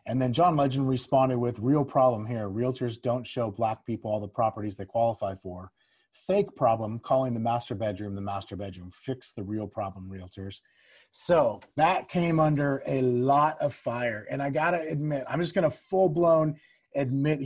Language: English